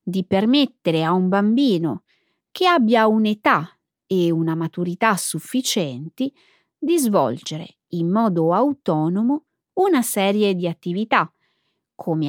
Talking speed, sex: 105 wpm, female